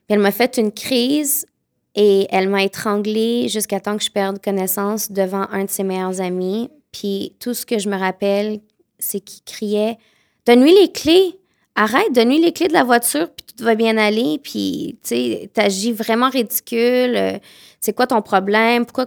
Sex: female